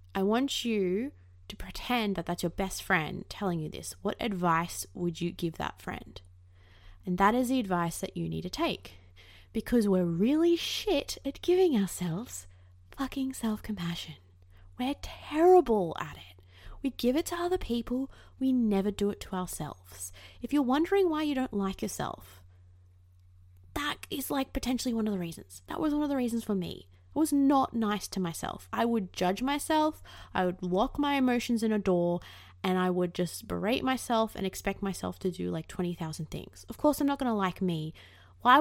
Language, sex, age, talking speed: English, female, 20-39, 185 wpm